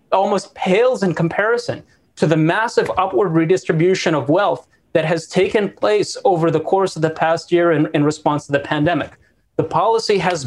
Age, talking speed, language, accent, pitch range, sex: 30-49, 180 wpm, English, American, 155-185 Hz, male